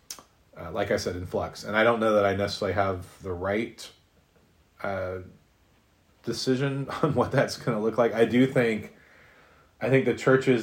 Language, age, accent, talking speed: English, 30-49, American, 180 wpm